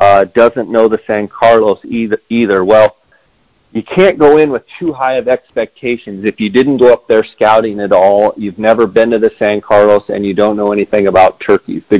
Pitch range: 105-125 Hz